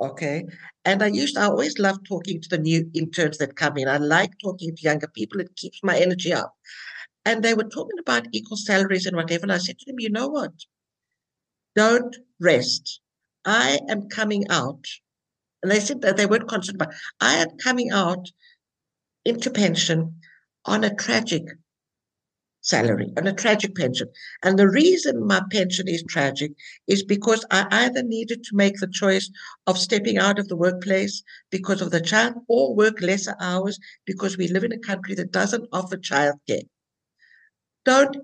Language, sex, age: English, female, 60-79